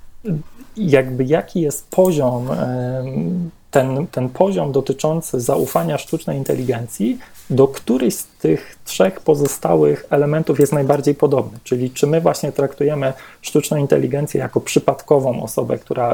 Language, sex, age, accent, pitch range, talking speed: Polish, male, 30-49, native, 130-155 Hz, 120 wpm